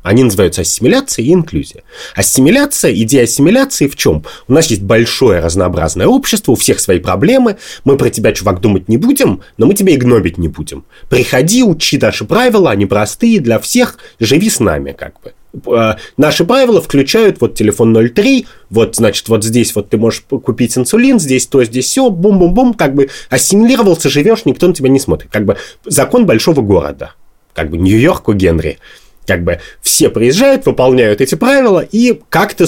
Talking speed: 175 wpm